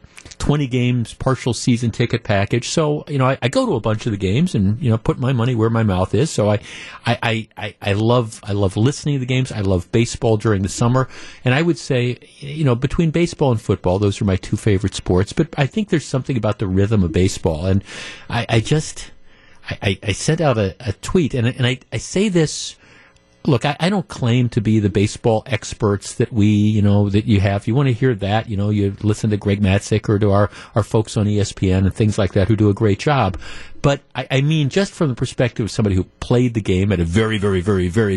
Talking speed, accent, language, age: 245 wpm, American, English, 50-69